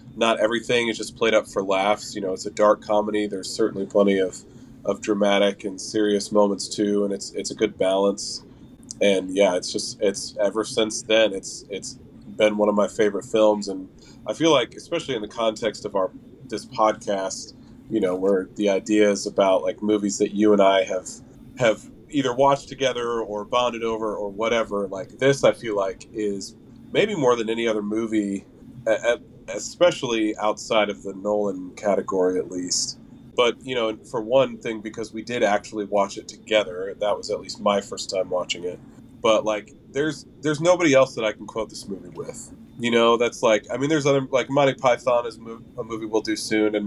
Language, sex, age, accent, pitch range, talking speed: English, male, 30-49, American, 100-115 Hz, 195 wpm